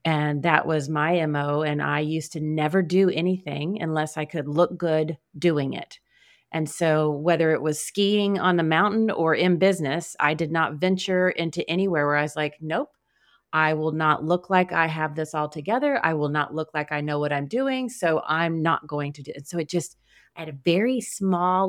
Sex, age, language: female, 30-49, English